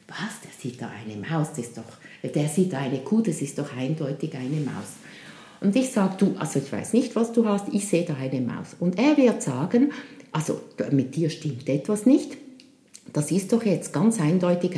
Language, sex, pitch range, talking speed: German, female, 140-220 Hz, 210 wpm